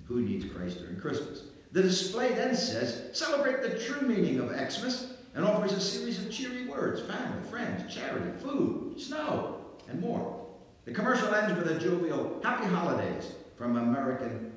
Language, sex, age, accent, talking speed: English, male, 60-79, American, 160 wpm